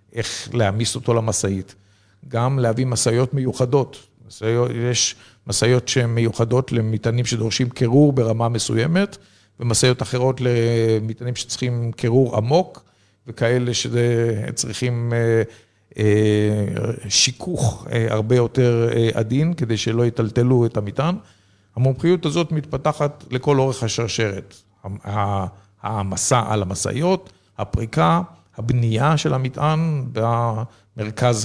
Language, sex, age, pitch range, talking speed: Hebrew, male, 50-69, 110-145 Hz, 95 wpm